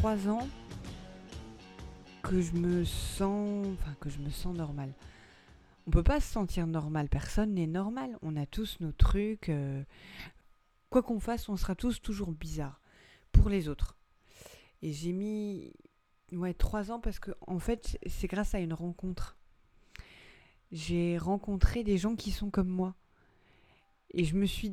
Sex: female